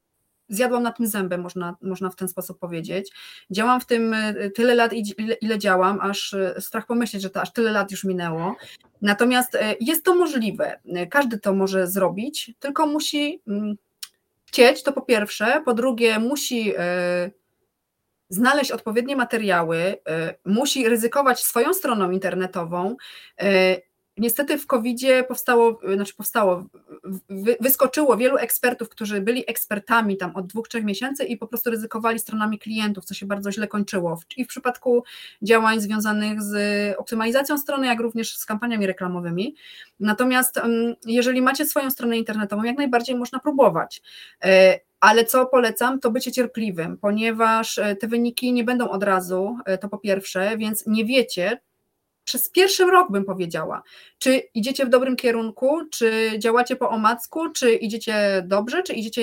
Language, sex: Polish, female